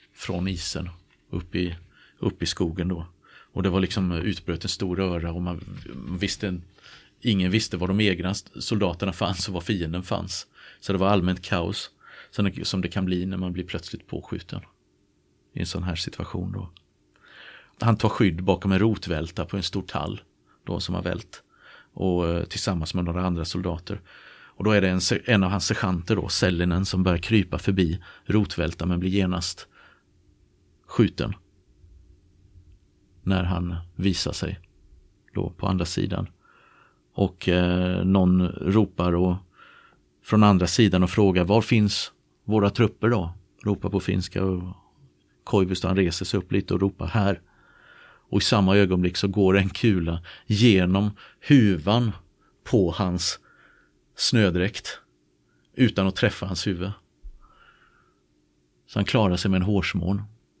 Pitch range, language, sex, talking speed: 90-100 Hz, Swedish, male, 145 wpm